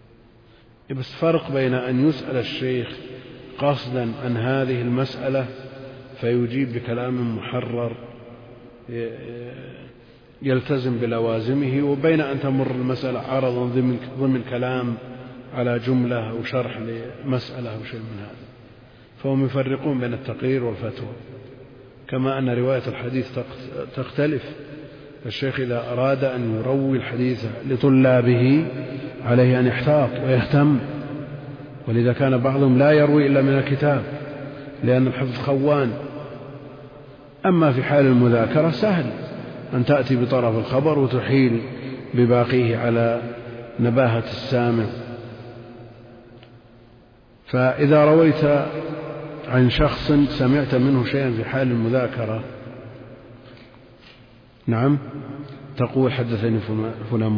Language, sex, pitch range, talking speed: Arabic, male, 120-135 Hz, 95 wpm